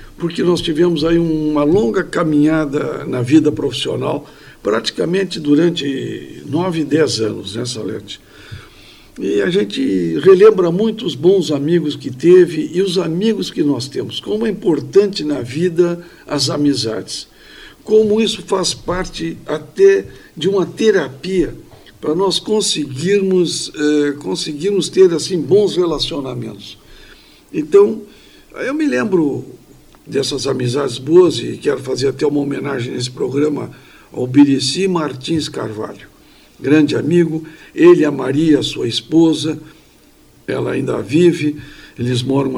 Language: Portuguese